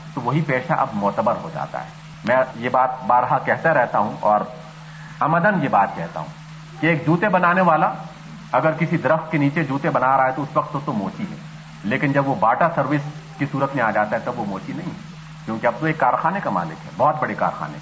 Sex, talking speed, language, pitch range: male, 225 wpm, Urdu, 145-165 Hz